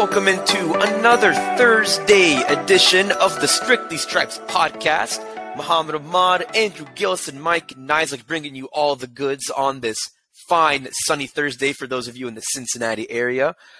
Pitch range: 130-165 Hz